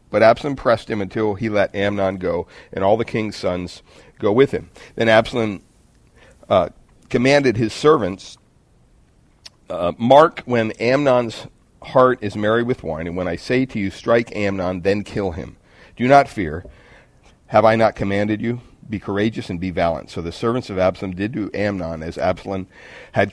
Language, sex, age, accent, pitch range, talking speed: English, male, 50-69, American, 95-120 Hz, 170 wpm